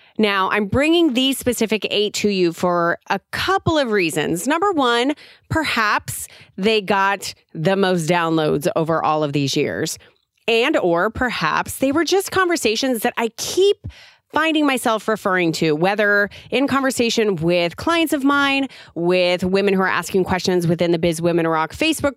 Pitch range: 175-250 Hz